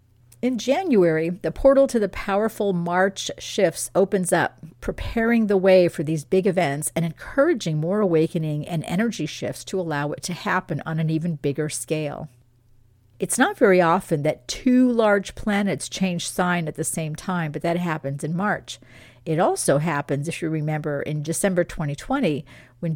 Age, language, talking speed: 50-69, English, 165 wpm